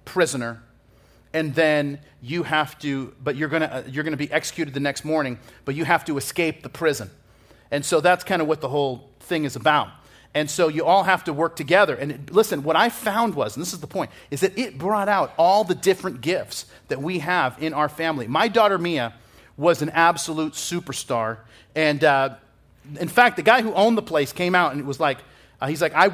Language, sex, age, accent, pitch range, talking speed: English, male, 40-59, American, 125-165 Hz, 220 wpm